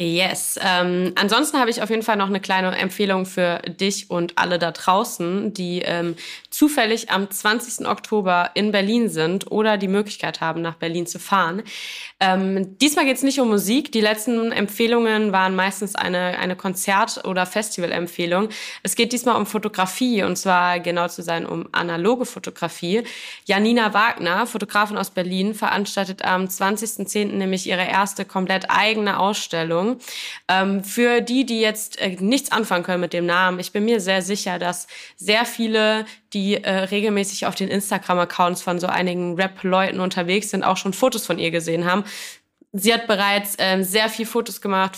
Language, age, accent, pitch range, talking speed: German, 20-39, German, 180-215 Hz, 170 wpm